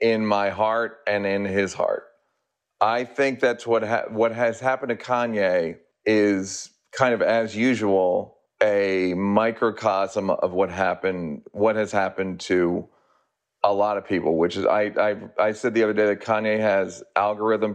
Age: 40-59